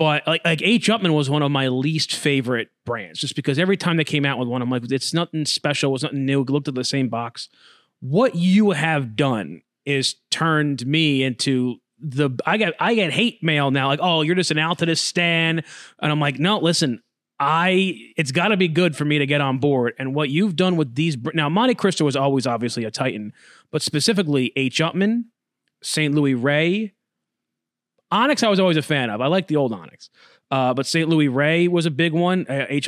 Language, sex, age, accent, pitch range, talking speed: English, male, 30-49, American, 135-165 Hz, 215 wpm